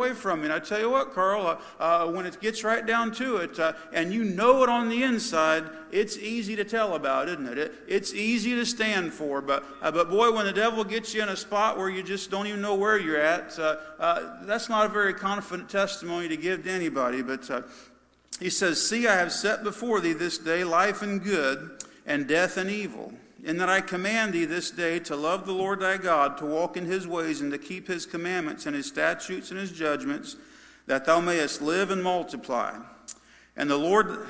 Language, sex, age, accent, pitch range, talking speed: English, male, 50-69, American, 155-215 Hz, 225 wpm